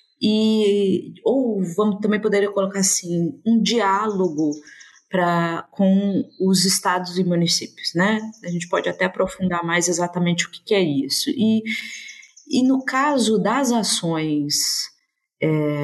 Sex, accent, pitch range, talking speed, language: female, Brazilian, 155-215 Hz, 135 wpm, Portuguese